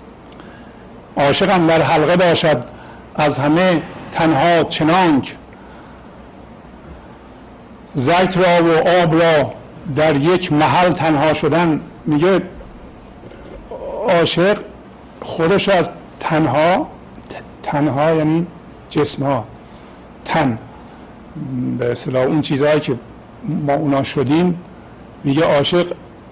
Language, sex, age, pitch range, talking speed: English, male, 50-69, 140-165 Hz, 85 wpm